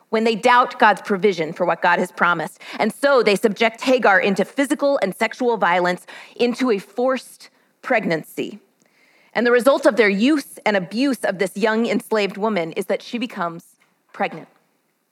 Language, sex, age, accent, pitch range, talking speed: English, female, 40-59, American, 215-275 Hz, 165 wpm